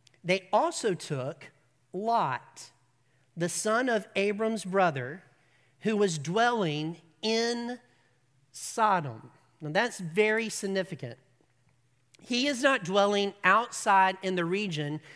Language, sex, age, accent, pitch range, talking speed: English, male, 40-59, American, 150-215 Hz, 105 wpm